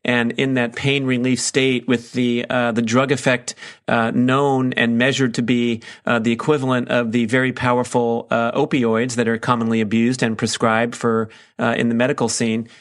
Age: 40-59